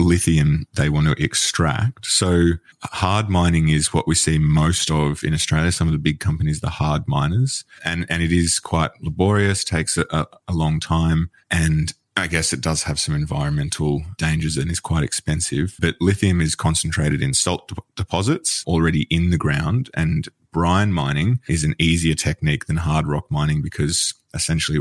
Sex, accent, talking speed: male, Australian, 175 wpm